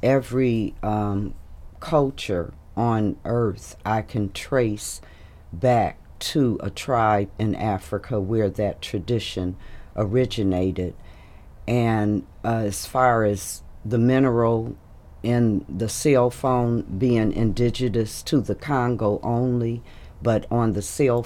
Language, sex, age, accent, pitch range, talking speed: English, female, 50-69, American, 95-120 Hz, 110 wpm